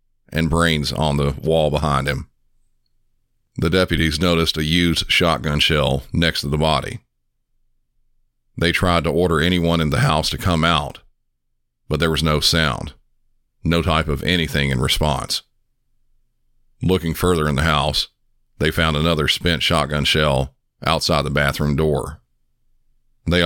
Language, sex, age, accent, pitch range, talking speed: English, male, 50-69, American, 75-85 Hz, 145 wpm